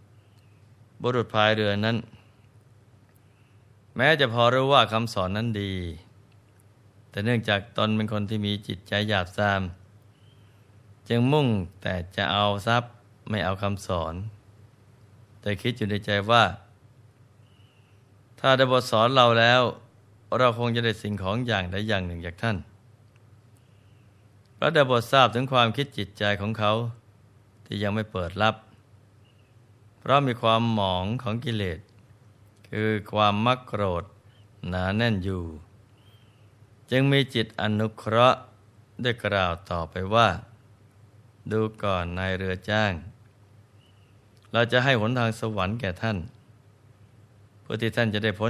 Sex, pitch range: male, 105-115 Hz